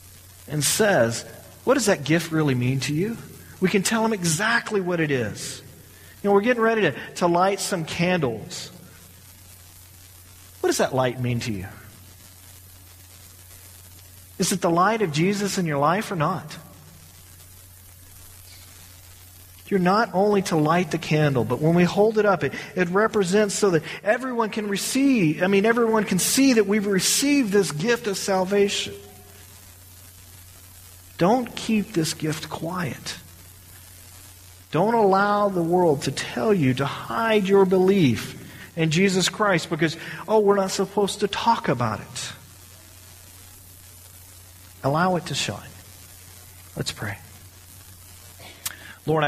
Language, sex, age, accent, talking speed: English, male, 40-59, American, 140 wpm